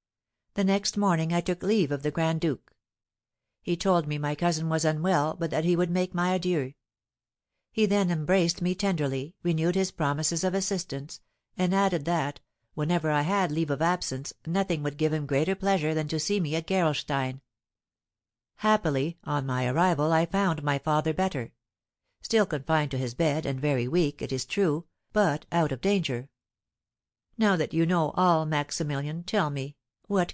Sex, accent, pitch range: female, American, 135-180 Hz